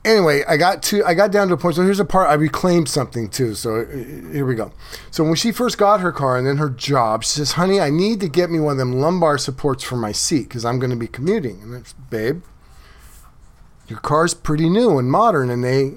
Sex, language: male, English